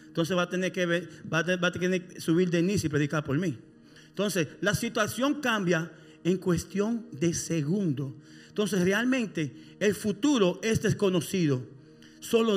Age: 40-59